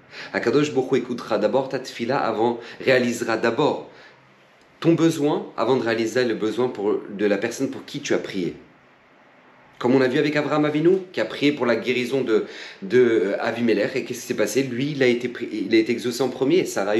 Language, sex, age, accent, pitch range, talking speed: French, male, 40-59, French, 110-145 Hz, 210 wpm